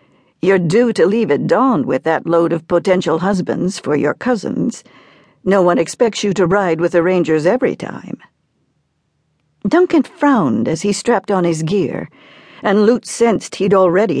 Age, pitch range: 60-79, 180-245 Hz